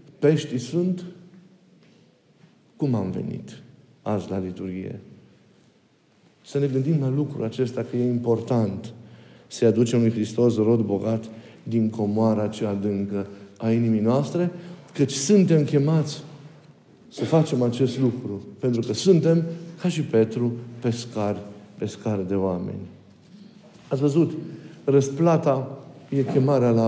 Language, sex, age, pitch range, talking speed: Romanian, male, 50-69, 115-155 Hz, 120 wpm